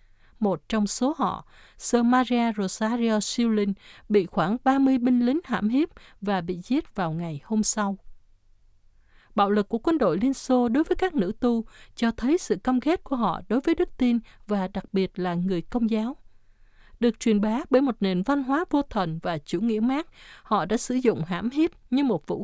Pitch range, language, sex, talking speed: 185-255 Hz, Vietnamese, female, 200 wpm